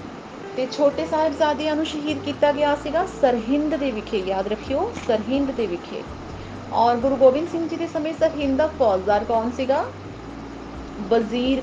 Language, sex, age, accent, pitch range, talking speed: Hindi, female, 30-49, native, 220-290 Hz, 125 wpm